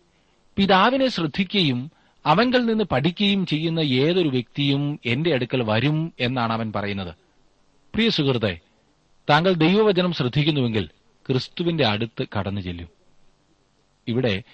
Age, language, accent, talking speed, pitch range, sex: 30-49, Malayalam, native, 95 wpm, 105-155 Hz, male